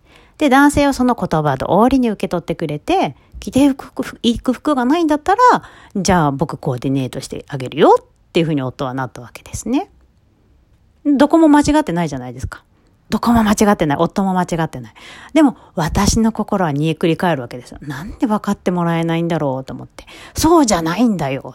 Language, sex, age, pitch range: Japanese, female, 40-59, 140-235 Hz